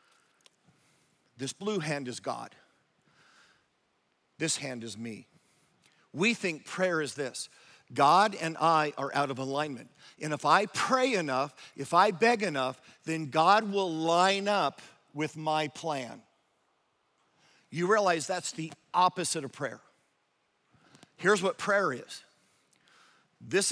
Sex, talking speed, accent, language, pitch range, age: male, 125 wpm, American, English, 145-195 Hz, 50-69